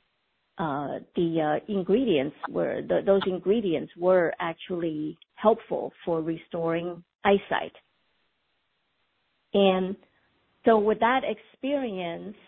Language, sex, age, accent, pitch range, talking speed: English, female, 50-69, American, 170-205 Hz, 90 wpm